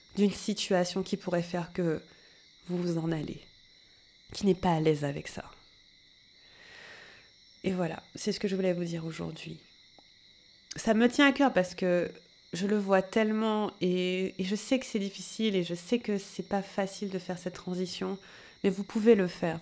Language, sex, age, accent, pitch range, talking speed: French, female, 30-49, French, 175-205 Hz, 185 wpm